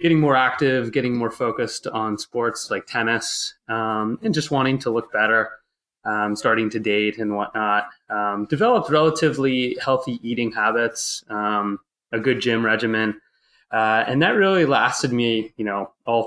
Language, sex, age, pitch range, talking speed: English, male, 20-39, 105-125 Hz, 160 wpm